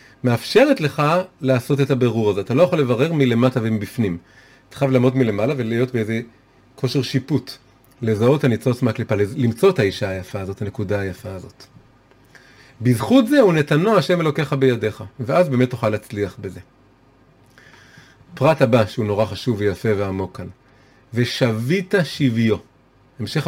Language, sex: Hebrew, male